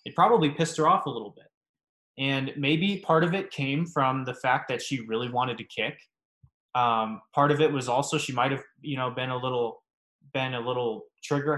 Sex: male